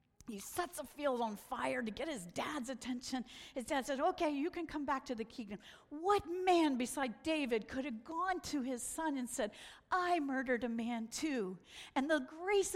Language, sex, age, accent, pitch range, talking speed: English, female, 50-69, American, 225-295 Hz, 200 wpm